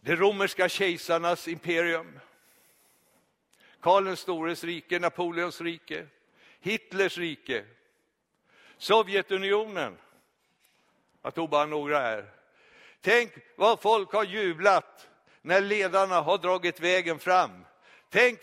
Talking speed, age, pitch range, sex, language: 95 wpm, 60-79, 195-230 Hz, male, Swedish